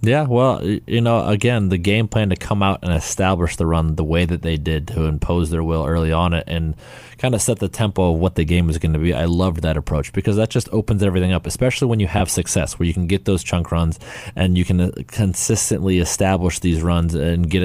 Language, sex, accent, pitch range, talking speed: English, male, American, 85-95 Hz, 245 wpm